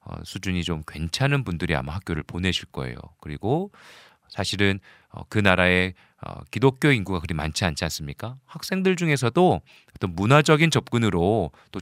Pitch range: 85-130 Hz